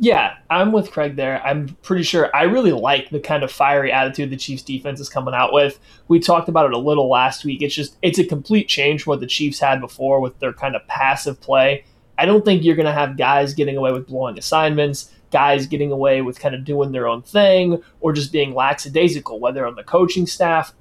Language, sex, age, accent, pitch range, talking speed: English, male, 20-39, American, 135-175 Hz, 235 wpm